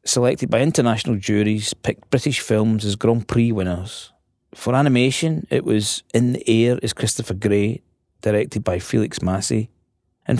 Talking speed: 150 wpm